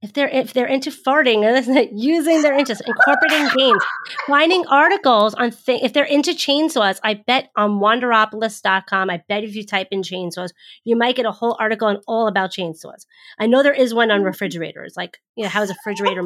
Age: 30-49